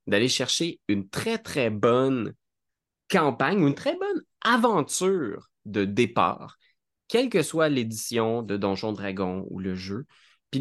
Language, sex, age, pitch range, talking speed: French, male, 20-39, 100-135 Hz, 140 wpm